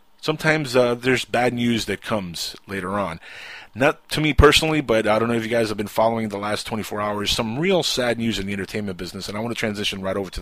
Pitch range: 95-125 Hz